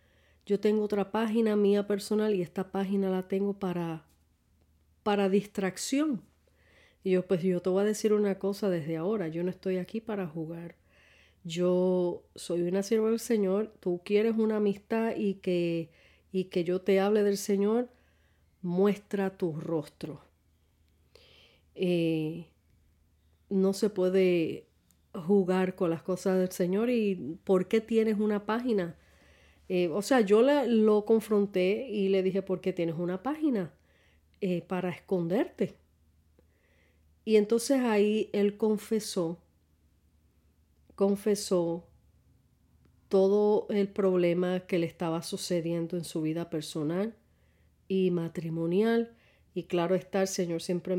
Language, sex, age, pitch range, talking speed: Spanish, female, 40-59, 165-205 Hz, 130 wpm